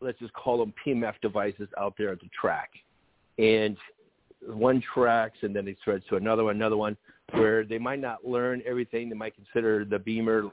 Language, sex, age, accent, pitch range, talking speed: English, male, 50-69, American, 105-115 Hz, 195 wpm